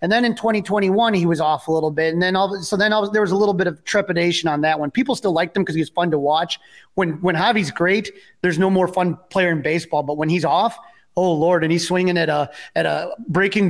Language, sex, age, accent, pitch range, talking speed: English, male, 30-49, American, 170-200 Hz, 260 wpm